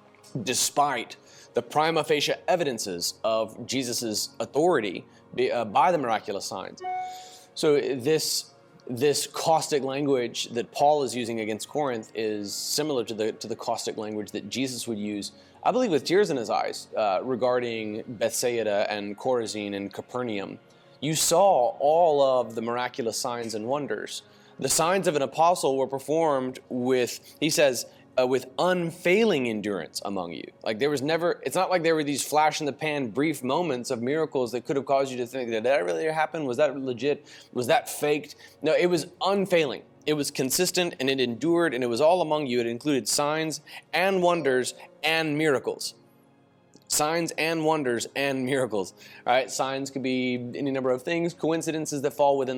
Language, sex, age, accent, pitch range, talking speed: English, male, 30-49, American, 120-155 Hz, 175 wpm